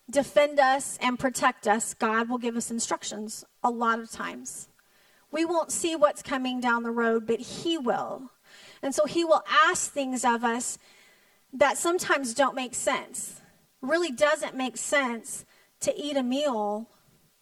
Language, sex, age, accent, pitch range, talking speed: English, female, 30-49, American, 220-310 Hz, 160 wpm